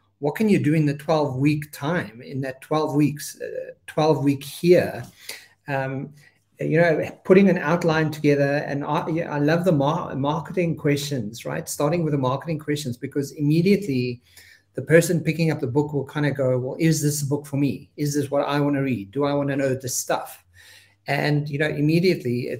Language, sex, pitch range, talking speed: English, male, 135-160 Hz, 200 wpm